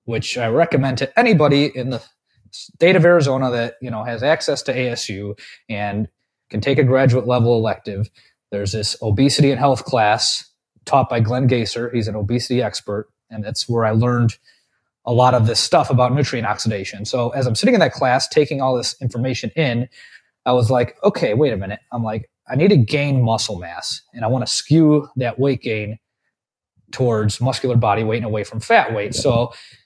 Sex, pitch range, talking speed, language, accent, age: male, 110-140 Hz, 195 wpm, English, American, 20-39